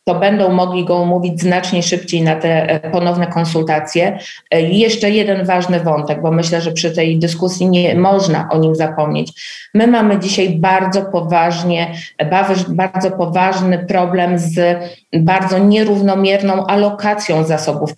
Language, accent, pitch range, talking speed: Polish, native, 160-195 Hz, 135 wpm